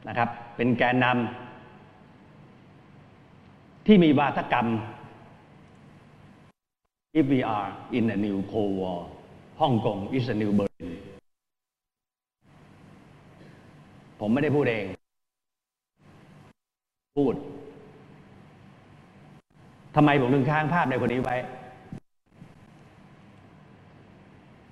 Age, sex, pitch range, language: 60-79, male, 115-145 Hz, Thai